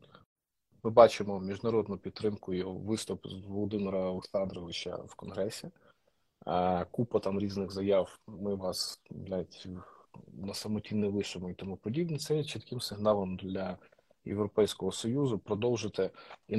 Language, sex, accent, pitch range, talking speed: Ukrainian, male, native, 95-115 Hz, 125 wpm